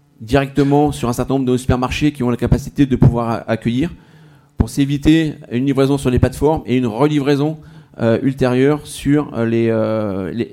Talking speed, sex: 170 wpm, male